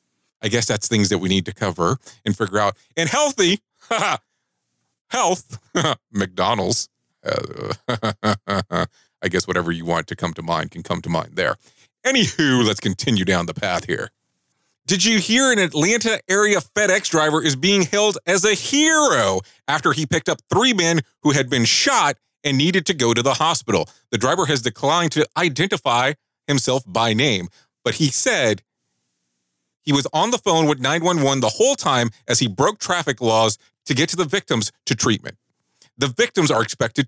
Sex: male